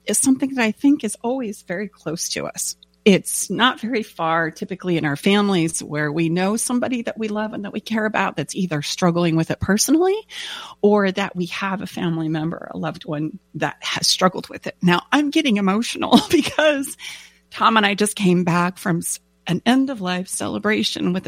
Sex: female